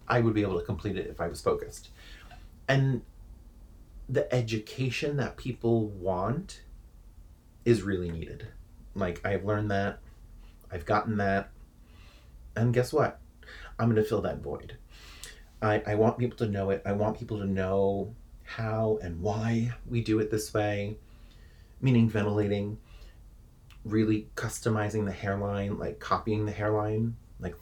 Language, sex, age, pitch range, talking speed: English, male, 30-49, 95-120 Hz, 145 wpm